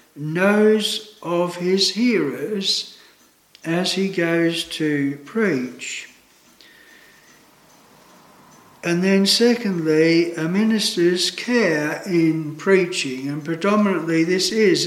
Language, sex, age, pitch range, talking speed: English, male, 60-79, 155-195 Hz, 85 wpm